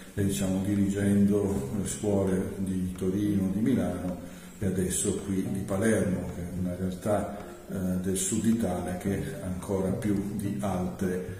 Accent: native